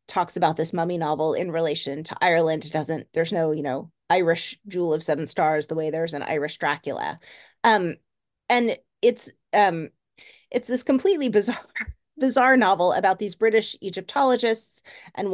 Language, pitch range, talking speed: English, 160-205 Hz, 160 wpm